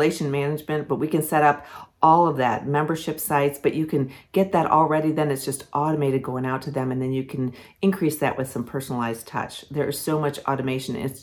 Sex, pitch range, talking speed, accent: female, 130-160 Hz, 215 wpm, American